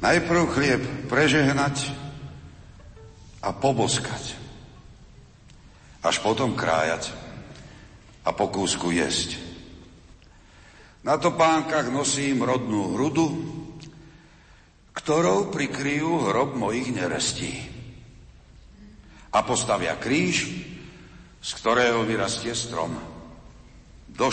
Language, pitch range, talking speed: Slovak, 105-150 Hz, 70 wpm